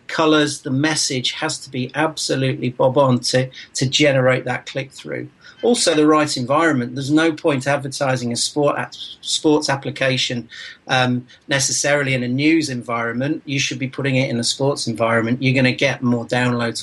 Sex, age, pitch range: male, 40-59, 125-150 Hz